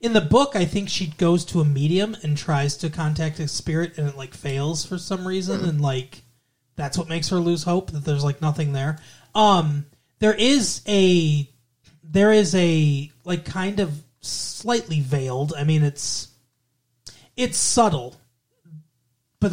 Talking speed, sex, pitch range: 165 wpm, male, 135-175 Hz